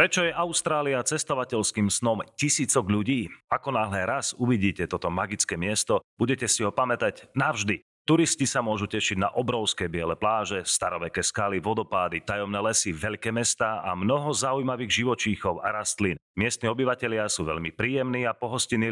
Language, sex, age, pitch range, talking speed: Slovak, male, 30-49, 100-130 Hz, 150 wpm